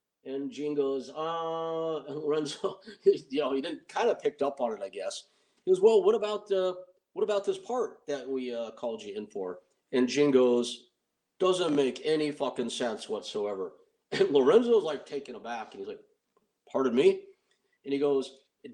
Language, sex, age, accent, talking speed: English, male, 50-69, American, 185 wpm